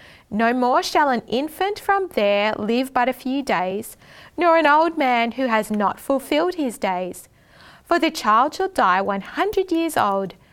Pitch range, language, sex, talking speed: 215-305 Hz, English, female, 170 wpm